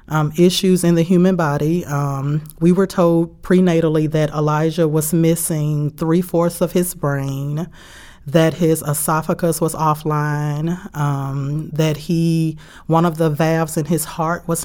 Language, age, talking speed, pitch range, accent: English, 30-49, 145 wpm, 150-170 Hz, American